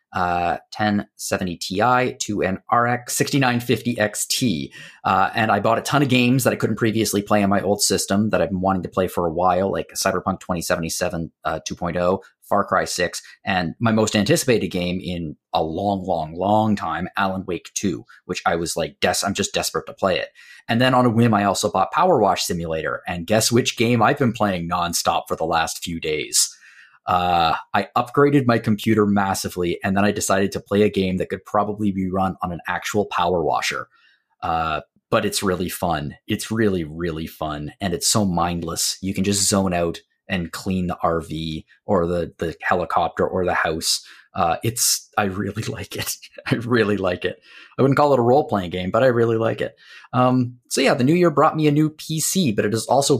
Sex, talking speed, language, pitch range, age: male, 205 wpm, English, 90-120 Hz, 30-49